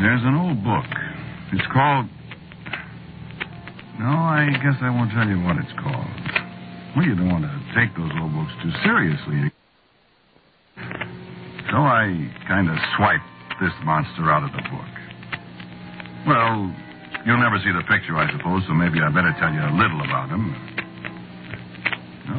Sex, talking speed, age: male, 155 wpm, 60-79